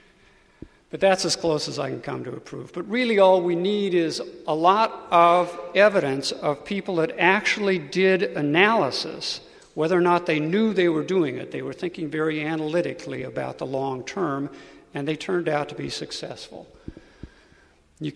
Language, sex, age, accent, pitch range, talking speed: English, male, 60-79, American, 145-180 Hz, 170 wpm